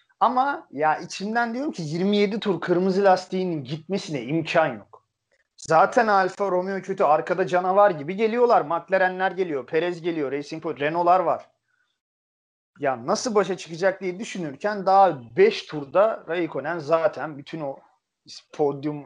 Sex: male